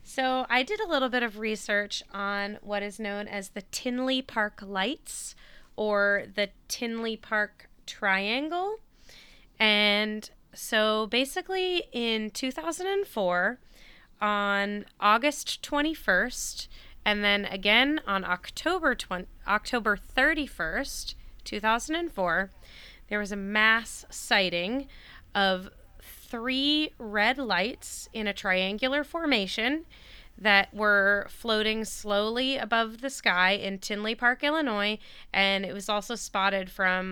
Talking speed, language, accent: 110 wpm, English, American